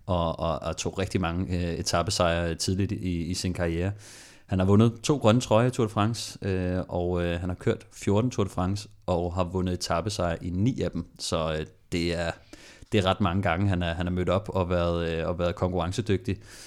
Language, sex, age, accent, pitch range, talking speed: Danish, male, 30-49, native, 90-105 Hz, 215 wpm